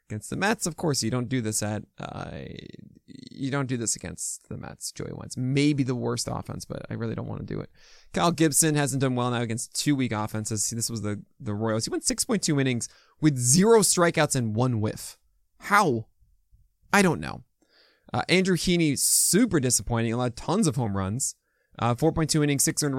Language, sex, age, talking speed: English, male, 20-39, 210 wpm